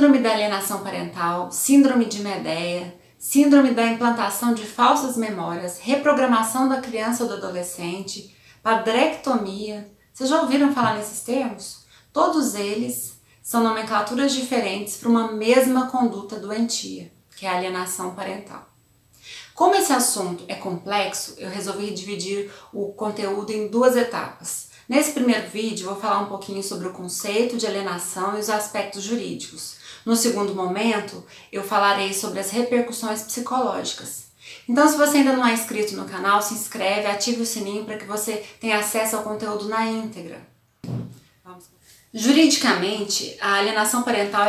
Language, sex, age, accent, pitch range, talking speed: Portuguese, female, 20-39, Brazilian, 200-240 Hz, 145 wpm